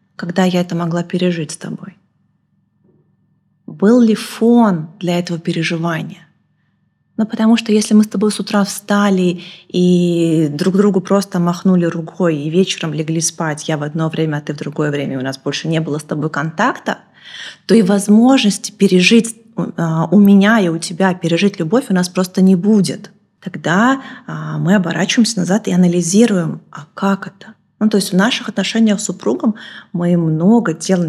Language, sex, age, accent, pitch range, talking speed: Russian, female, 20-39, native, 170-205 Hz, 165 wpm